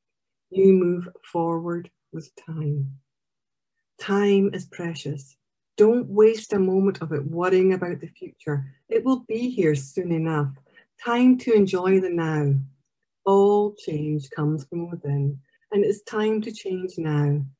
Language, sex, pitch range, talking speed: English, female, 145-200 Hz, 135 wpm